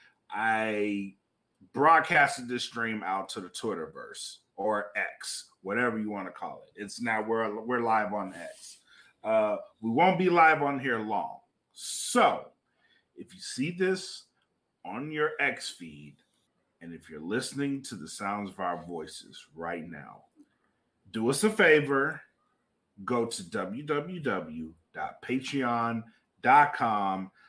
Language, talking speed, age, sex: English, 130 wpm, 30-49, male